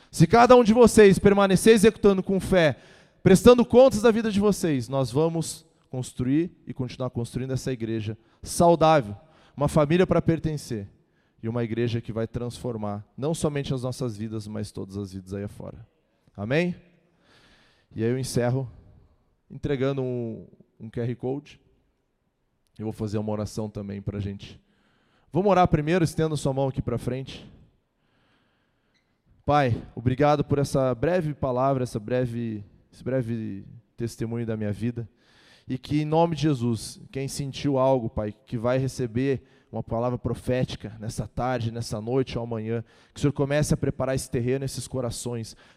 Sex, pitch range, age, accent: male, 115-160 Hz, 20-39, Brazilian